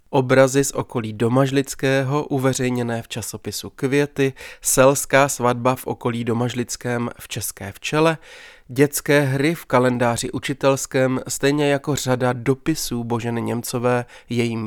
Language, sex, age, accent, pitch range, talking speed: Czech, male, 20-39, native, 120-135 Hz, 115 wpm